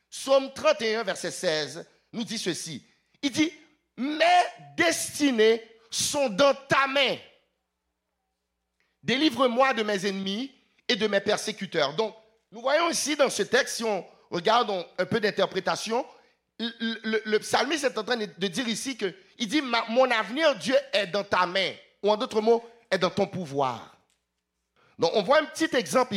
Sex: male